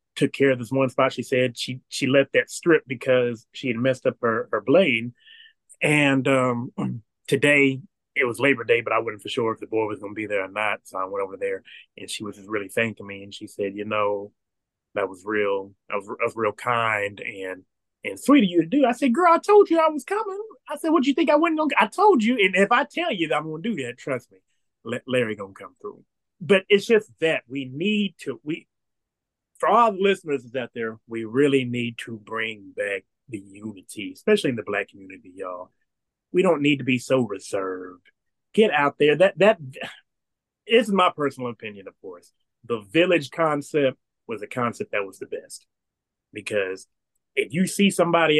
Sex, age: male, 30-49